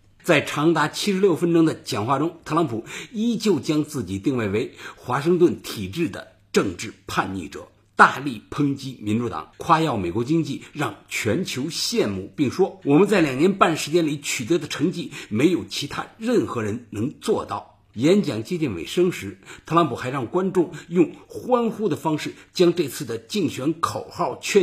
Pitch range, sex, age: 120-180 Hz, male, 50-69